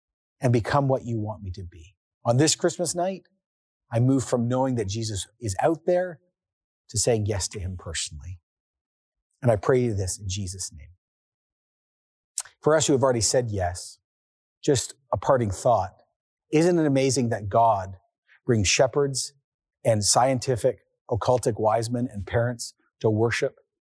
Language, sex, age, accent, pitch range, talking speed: English, male, 40-59, American, 110-145 Hz, 155 wpm